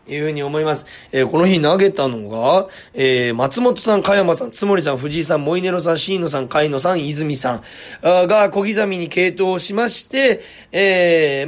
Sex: male